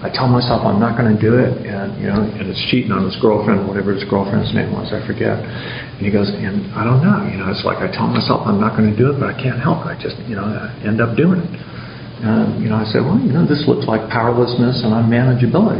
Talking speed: 275 wpm